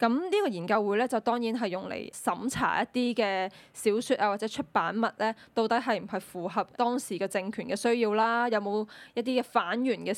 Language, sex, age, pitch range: Chinese, female, 10-29, 205-245 Hz